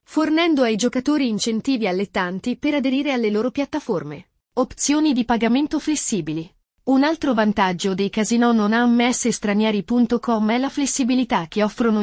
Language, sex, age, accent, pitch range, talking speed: Italian, female, 30-49, native, 215-270 Hz, 130 wpm